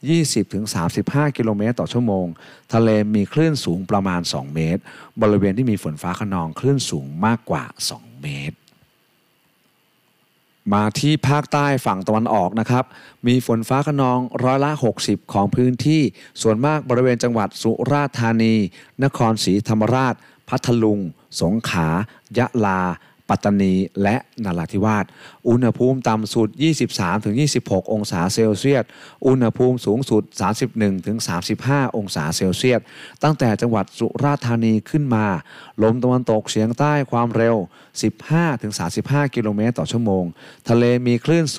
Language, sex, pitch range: Thai, male, 100-130 Hz